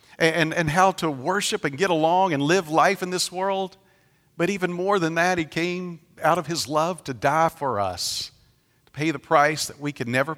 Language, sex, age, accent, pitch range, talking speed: English, male, 50-69, American, 115-150 Hz, 215 wpm